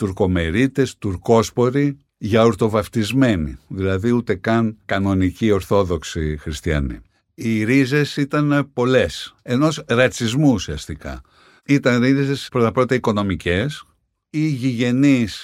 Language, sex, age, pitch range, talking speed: Greek, male, 60-79, 90-125 Hz, 95 wpm